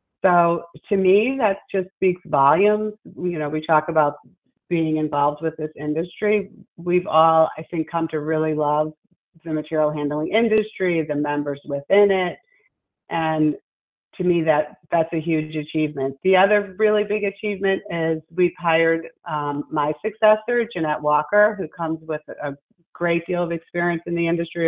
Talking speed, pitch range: 160 wpm, 150-175 Hz